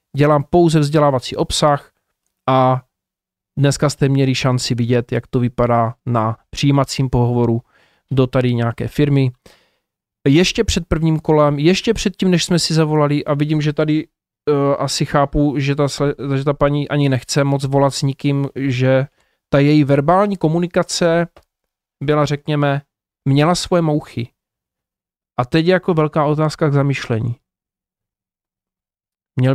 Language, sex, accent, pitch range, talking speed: Czech, male, native, 140-185 Hz, 135 wpm